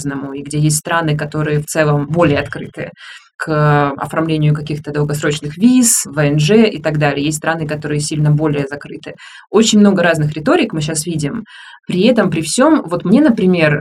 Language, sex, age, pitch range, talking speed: Russian, female, 20-39, 150-200 Hz, 165 wpm